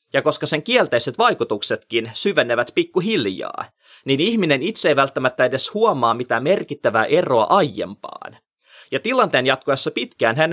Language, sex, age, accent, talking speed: Finnish, male, 30-49, native, 130 wpm